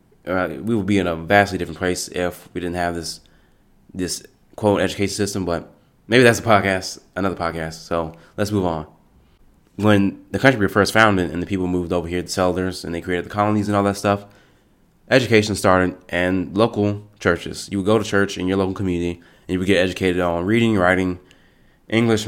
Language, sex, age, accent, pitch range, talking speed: English, male, 20-39, American, 90-105 Hz, 205 wpm